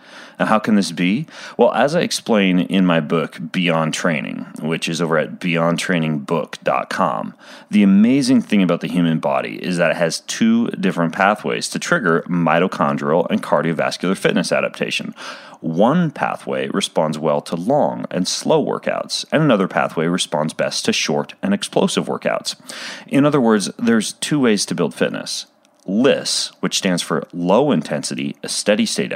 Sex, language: male, English